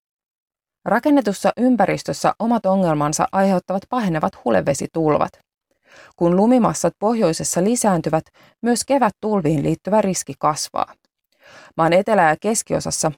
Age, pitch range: 30-49, 160-220 Hz